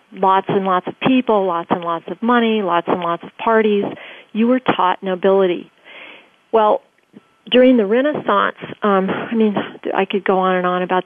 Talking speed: 180 wpm